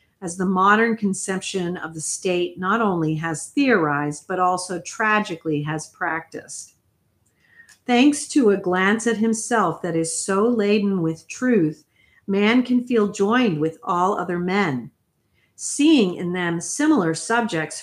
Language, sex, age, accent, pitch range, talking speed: English, female, 50-69, American, 165-215 Hz, 140 wpm